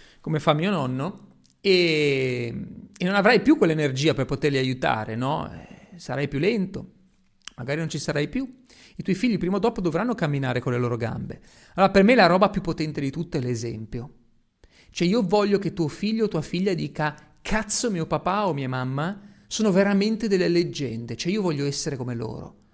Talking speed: 185 wpm